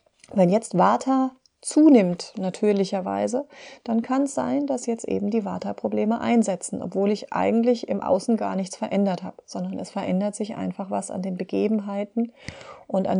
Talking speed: 160 wpm